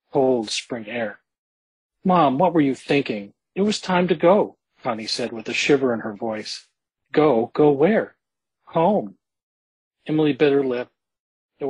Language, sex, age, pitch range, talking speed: English, male, 40-59, 125-155 Hz, 155 wpm